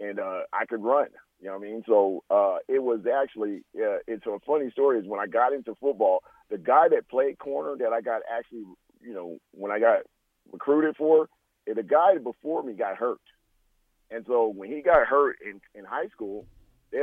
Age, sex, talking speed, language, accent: 50-69, male, 210 wpm, English, American